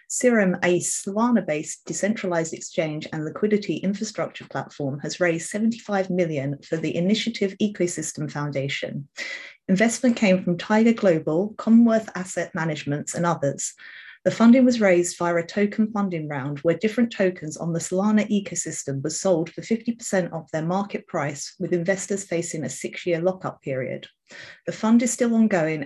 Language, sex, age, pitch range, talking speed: English, female, 30-49, 165-210 Hz, 150 wpm